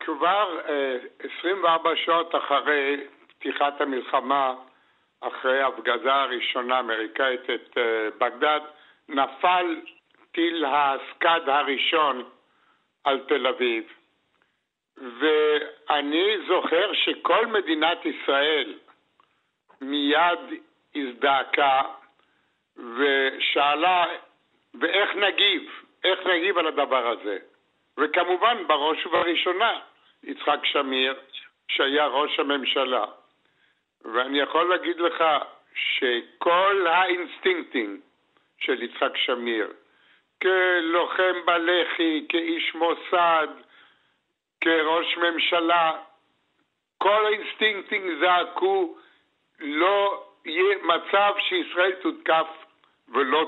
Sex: male